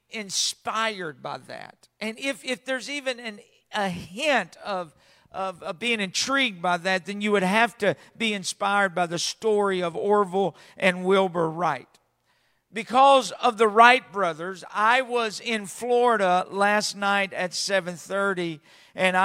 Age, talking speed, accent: 50-69, 150 wpm, American